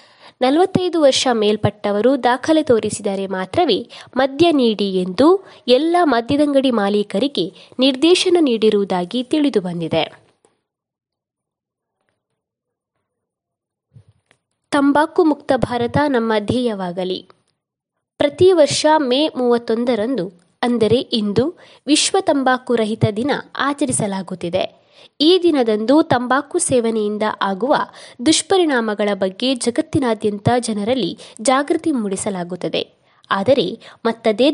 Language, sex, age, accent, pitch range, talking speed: Kannada, female, 20-39, native, 215-295 Hz, 75 wpm